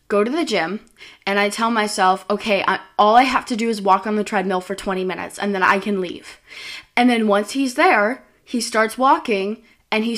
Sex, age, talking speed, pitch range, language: female, 20-39, 220 wpm, 205-255 Hz, English